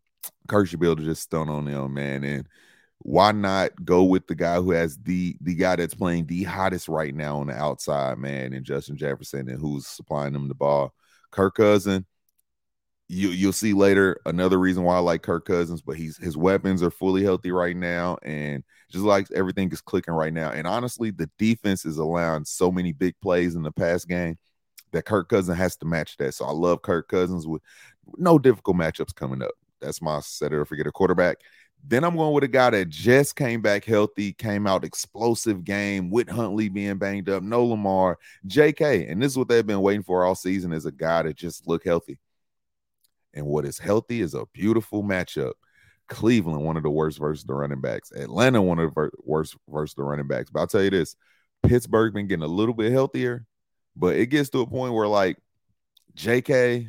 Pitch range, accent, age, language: 80-105 Hz, American, 30-49, English